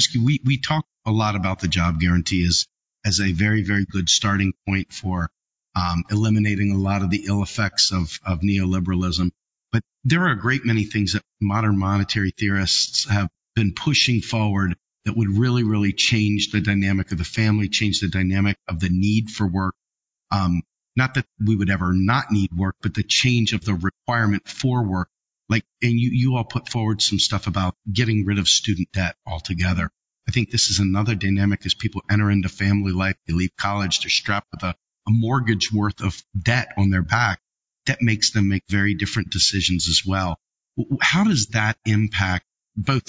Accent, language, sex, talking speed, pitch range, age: American, English, male, 190 wpm, 95-110 Hz, 50-69